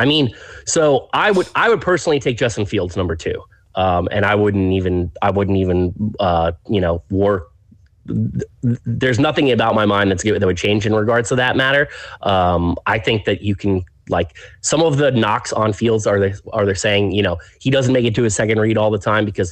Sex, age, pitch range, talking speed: male, 30-49, 95-120 Hz, 220 wpm